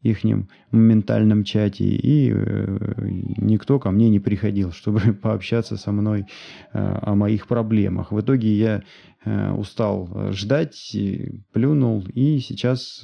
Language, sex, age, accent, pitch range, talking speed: Russian, male, 30-49, native, 100-115 Hz, 110 wpm